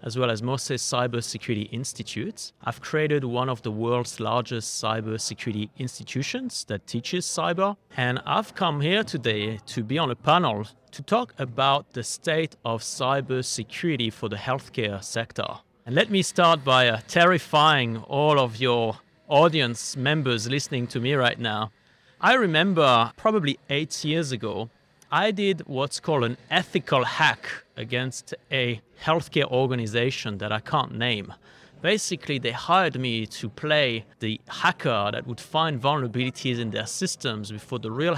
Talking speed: 150 wpm